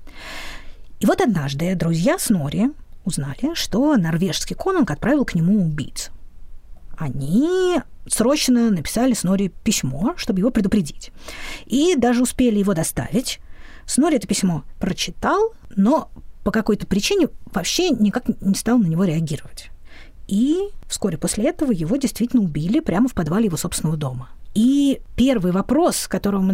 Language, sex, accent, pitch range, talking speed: Russian, female, native, 150-235 Hz, 135 wpm